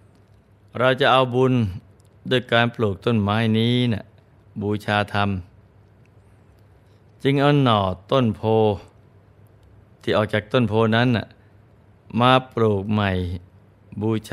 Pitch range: 100-115 Hz